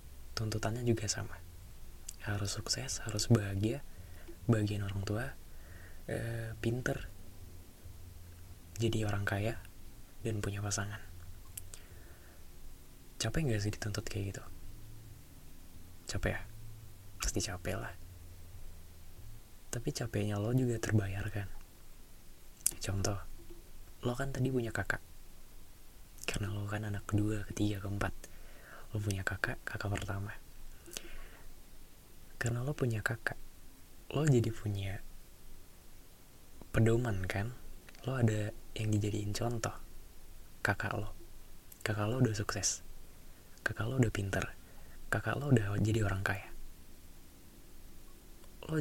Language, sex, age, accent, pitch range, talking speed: Indonesian, male, 20-39, native, 90-110 Hz, 100 wpm